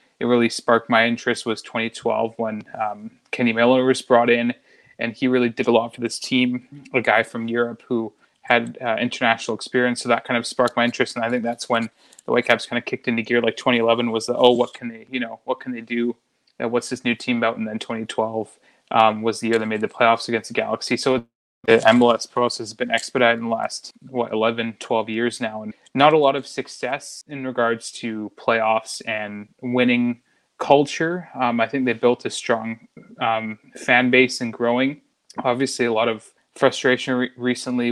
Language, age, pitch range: English, 20-39, 115-125 Hz